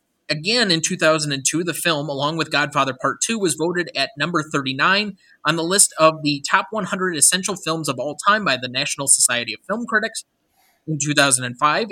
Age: 20-39